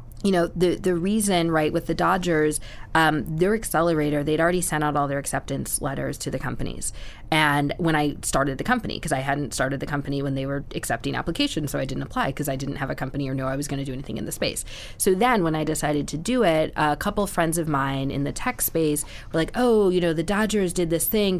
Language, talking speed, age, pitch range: English, 245 wpm, 20-39, 140-165 Hz